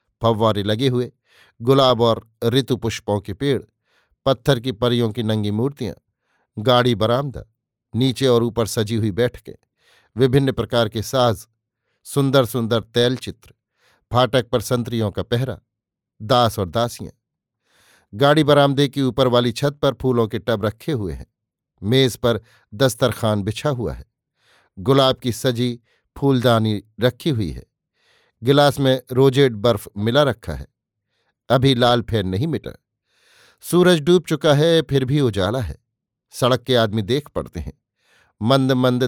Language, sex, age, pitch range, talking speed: Hindi, male, 50-69, 110-130 Hz, 145 wpm